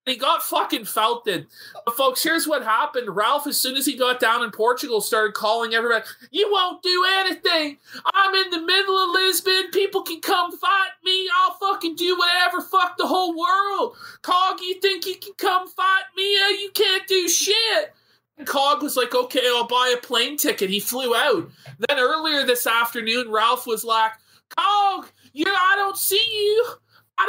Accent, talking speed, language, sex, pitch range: American, 180 wpm, English, male, 235-390 Hz